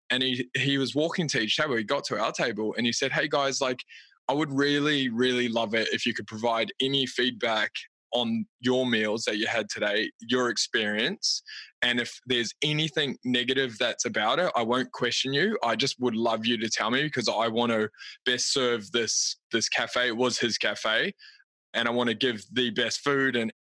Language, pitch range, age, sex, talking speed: English, 115-135 Hz, 20-39, male, 210 wpm